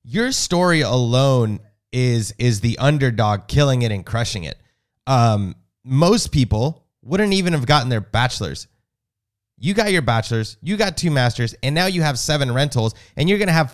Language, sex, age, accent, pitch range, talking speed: English, male, 30-49, American, 110-150 Hz, 175 wpm